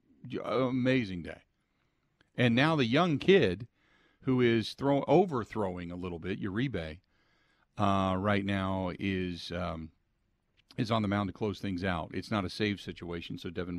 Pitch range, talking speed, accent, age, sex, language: 90-105 Hz, 150 wpm, American, 50-69, male, English